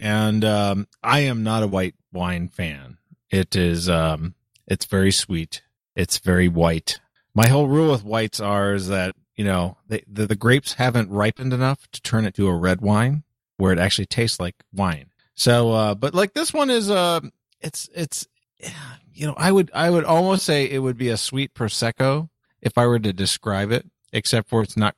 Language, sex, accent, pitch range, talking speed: English, male, American, 100-125 Hz, 190 wpm